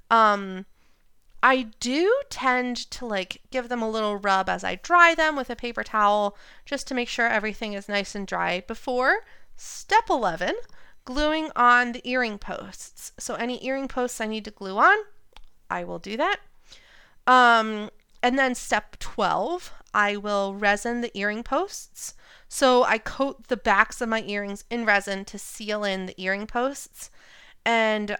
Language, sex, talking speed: English, female, 165 wpm